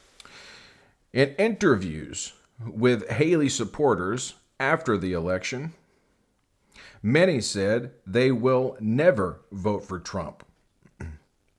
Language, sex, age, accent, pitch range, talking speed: English, male, 40-59, American, 105-130 Hz, 85 wpm